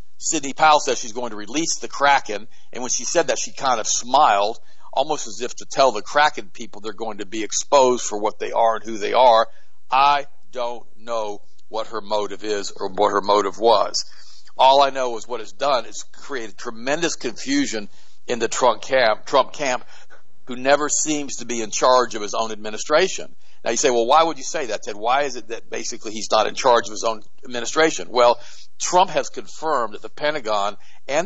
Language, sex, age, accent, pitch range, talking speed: English, male, 50-69, American, 110-140 Hz, 210 wpm